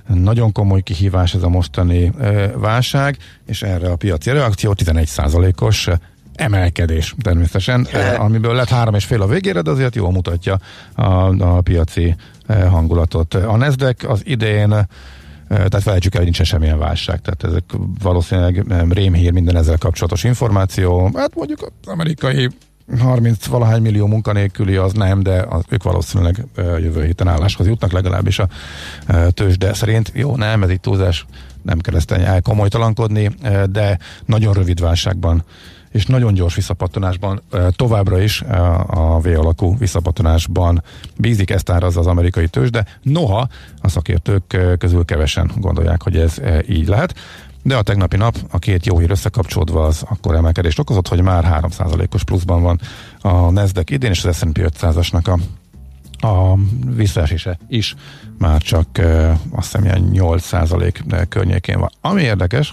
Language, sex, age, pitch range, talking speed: Hungarian, male, 50-69, 85-110 Hz, 140 wpm